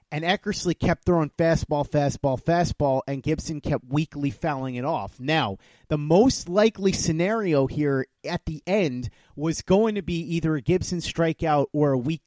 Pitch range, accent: 150-185 Hz, American